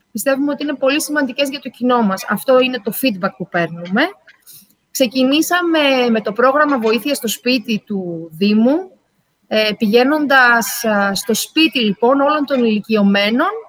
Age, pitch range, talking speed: 30-49, 210-300 Hz, 135 wpm